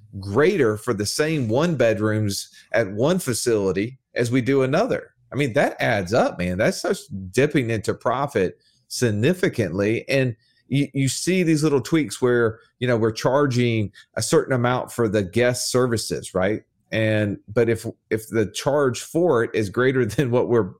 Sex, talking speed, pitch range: male, 165 wpm, 105-135 Hz